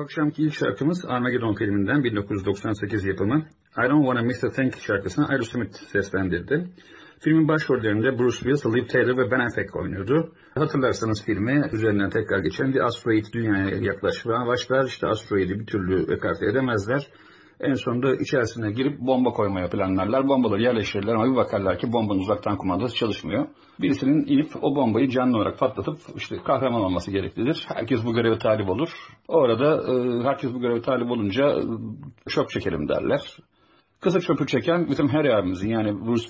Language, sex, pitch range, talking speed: English, male, 105-140 Hz, 140 wpm